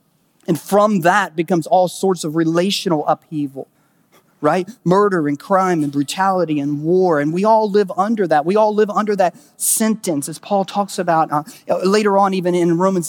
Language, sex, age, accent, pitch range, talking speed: English, male, 30-49, American, 150-185 Hz, 180 wpm